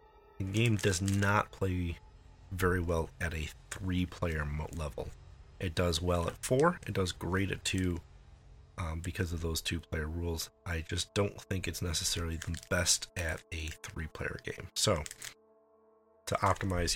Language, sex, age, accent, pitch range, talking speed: English, male, 30-49, American, 85-105 Hz, 150 wpm